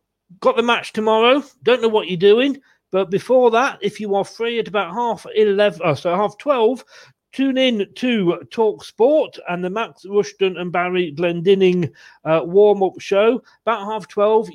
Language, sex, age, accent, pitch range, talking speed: English, male, 40-59, British, 155-210 Hz, 175 wpm